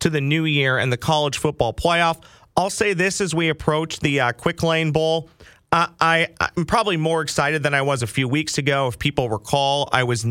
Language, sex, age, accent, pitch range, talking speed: English, male, 40-59, American, 120-155 Hz, 220 wpm